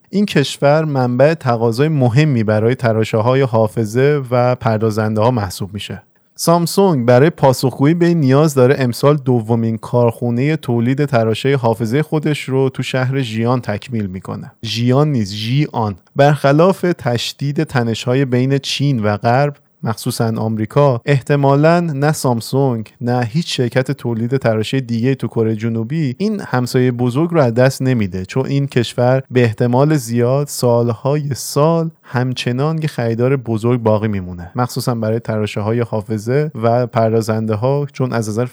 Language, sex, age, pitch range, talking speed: Persian, male, 30-49, 115-140 Hz, 135 wpm